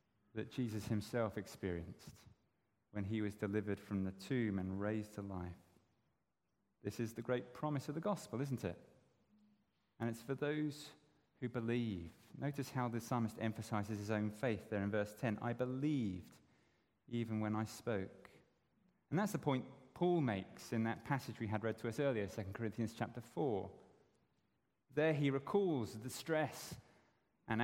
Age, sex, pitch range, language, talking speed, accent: 30-49, male, 105-135 Hz, English, 160 wpm, British